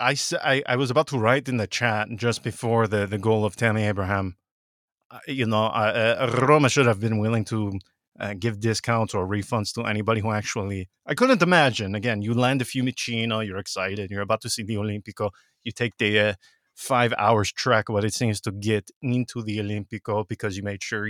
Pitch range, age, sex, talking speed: 105-135 Hz, 20-39, male, 205 wpm